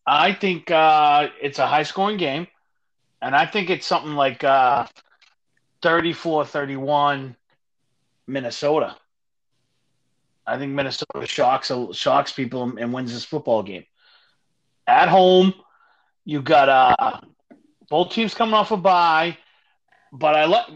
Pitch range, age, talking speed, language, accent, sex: 145-195 Hz, 30-49, 125 wpm, English, American, male